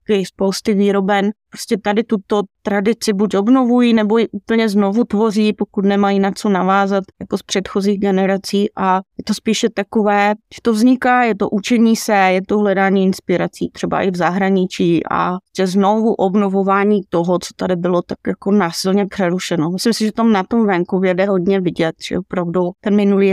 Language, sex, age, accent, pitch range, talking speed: Czech, female, 20-39, native, 180-205 Hz, 175 wpm